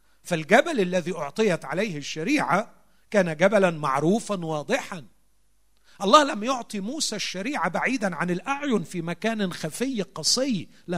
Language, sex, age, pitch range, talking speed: Arabic, male, 50-69, 165-245 Hz, 120 wpm